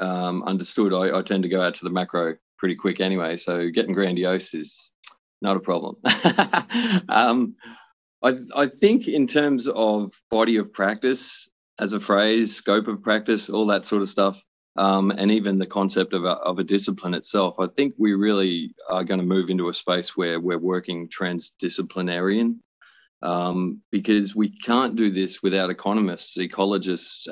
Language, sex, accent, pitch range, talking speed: English, male, Australian, 95-105 Hz, 170 wpm